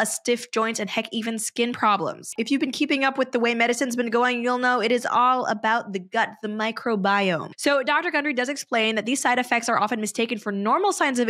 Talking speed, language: 240 wpm, English